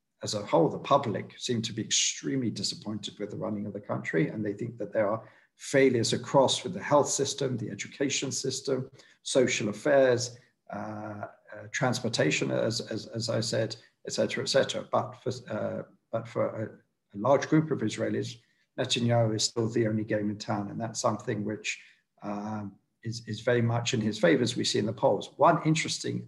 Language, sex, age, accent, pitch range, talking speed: English, male, 50-69, British, 105-125 Hz, 185 wpm